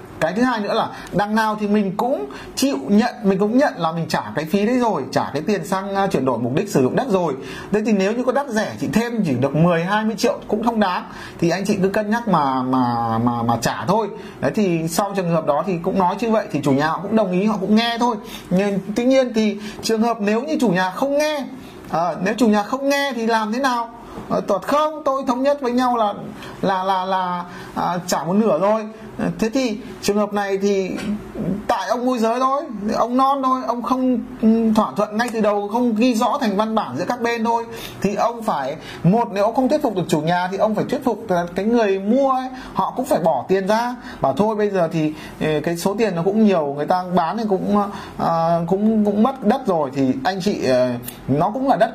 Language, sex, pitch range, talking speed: Vietnamese, male, 190-235 Hz, 240 wpm